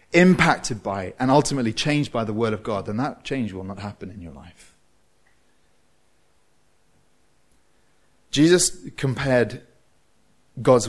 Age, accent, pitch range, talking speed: 30-49, British, 105-150 Hz, 120 wpm